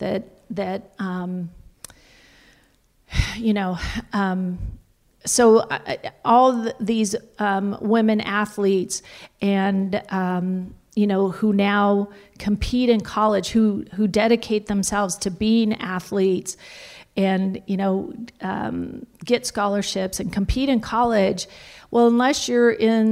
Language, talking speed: English, 115 wpm